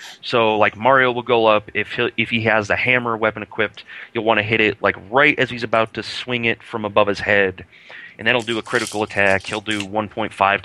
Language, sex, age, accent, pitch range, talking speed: English, male, 30-49, American, 95-115 Hz, 230 wpm